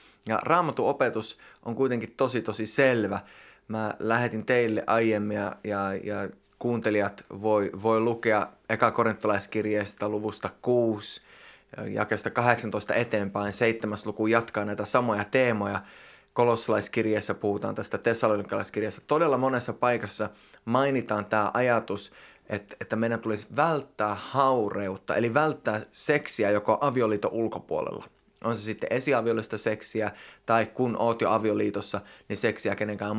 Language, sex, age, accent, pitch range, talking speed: Finnish, male, 20-39, native, 105-120 Hz, 120 wpm